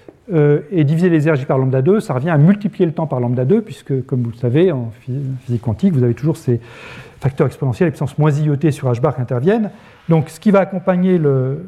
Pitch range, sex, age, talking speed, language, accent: 135-185 Hz, male, 40-59, 235 wpm, French, French